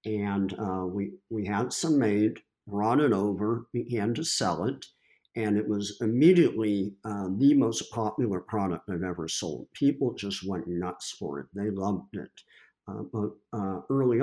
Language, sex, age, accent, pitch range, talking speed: English, male, 50-69, American, 95-115 Hz, 165 wpm